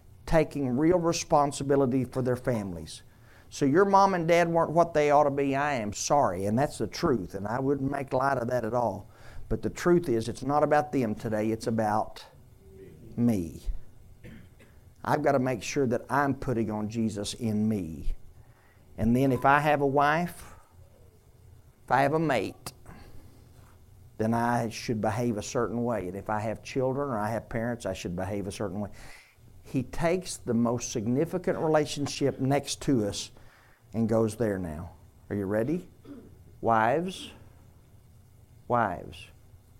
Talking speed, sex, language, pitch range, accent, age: 165 wpm, male, English, 105-140 Hz, American, 50-69